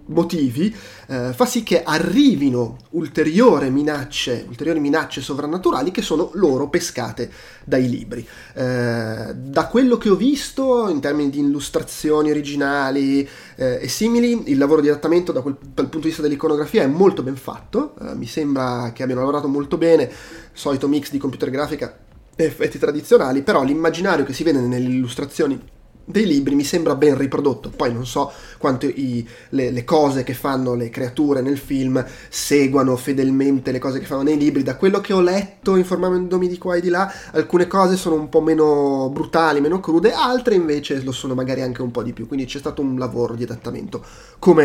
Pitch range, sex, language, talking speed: 130-165 Hz, male, Italian, 185 wpm